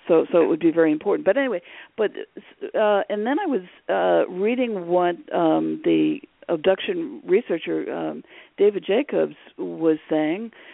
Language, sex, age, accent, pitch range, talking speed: English, female, 50-69, American, 170-265 Hz, 150 wpm